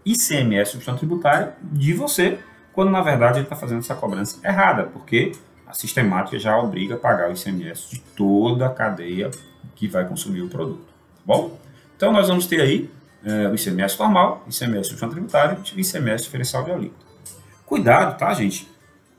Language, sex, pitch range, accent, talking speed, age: Portuguese, male, 110-160 Hz, Brazilian, 165 wpm, 30-49